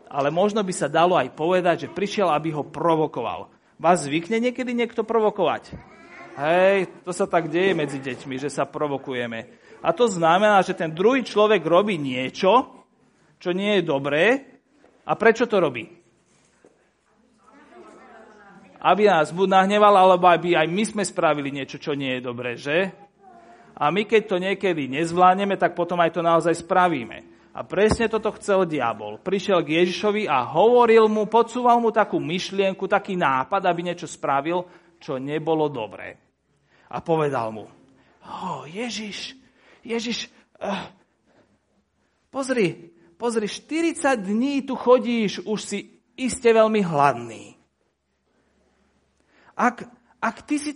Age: 40-59